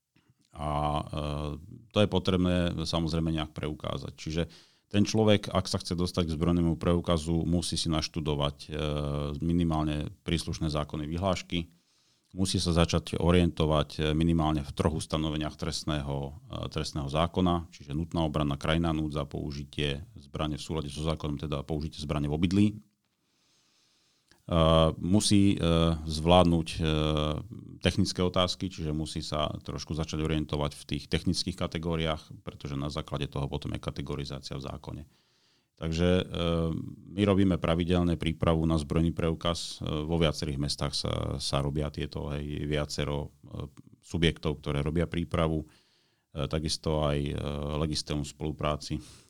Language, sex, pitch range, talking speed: Slovak, male, 75-85 Hz, 130 wpm